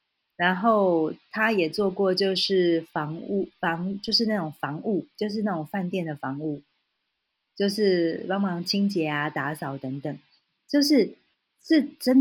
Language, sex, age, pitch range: Chinese, female, 30-49, 160-210 Hz